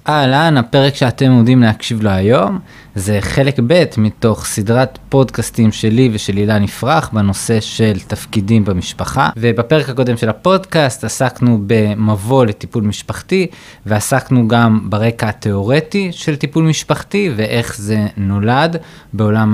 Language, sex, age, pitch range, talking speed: Hebrew, male, 20-39, 105-145 Hz, 125 wpm